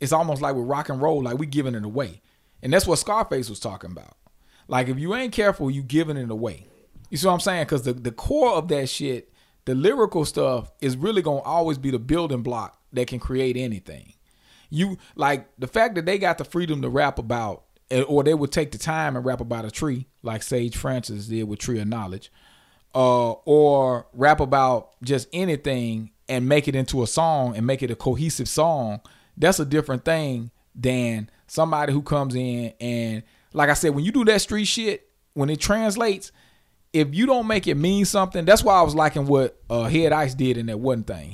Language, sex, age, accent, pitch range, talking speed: English, male, 40-59, American, 125-155 Hz, 215 wpm